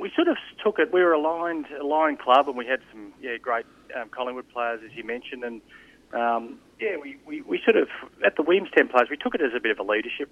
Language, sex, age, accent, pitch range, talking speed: English, male, 30-49, Australian, 115-140 Hz, 250 wpm